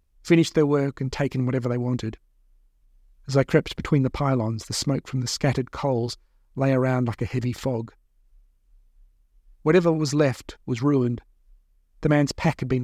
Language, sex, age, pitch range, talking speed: English, male, 40-59, 115-145 Hz, 170 wpm